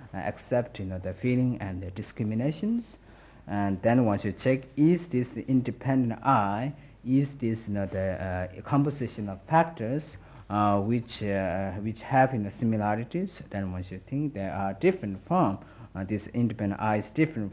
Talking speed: 175 wpm